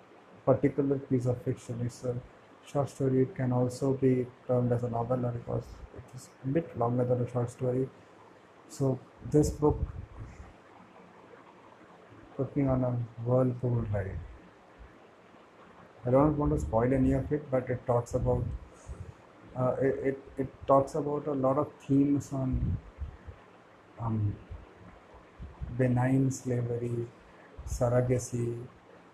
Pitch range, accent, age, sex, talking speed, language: 110-135 Hz, Indian, 50-69, male, 125 wpm, English